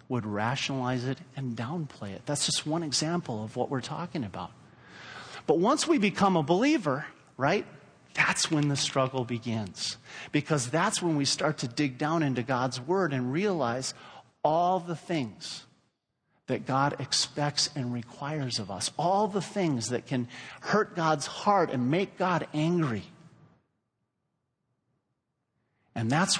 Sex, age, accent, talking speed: male, 40-59, American, 145 wpm